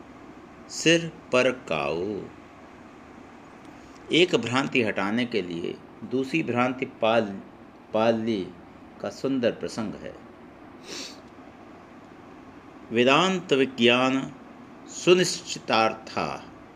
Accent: native